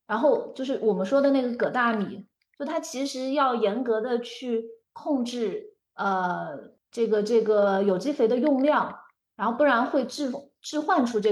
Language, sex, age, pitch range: Chinese, female, 30-49, 210-280 Hz